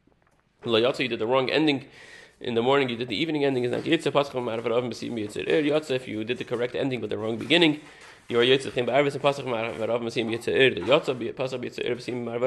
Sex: male